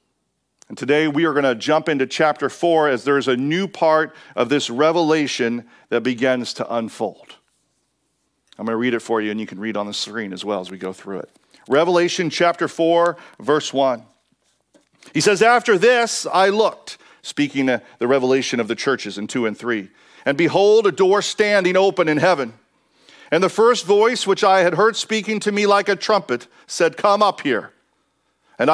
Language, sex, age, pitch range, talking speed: English, male, 40-59, 145-200 Hz, 190 wpm